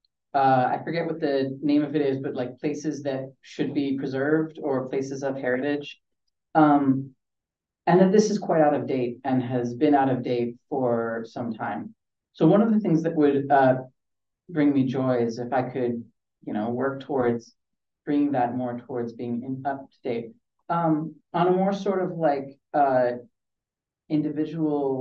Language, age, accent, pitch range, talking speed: English, 30-49, American, 130-160 Hz, 180 wpm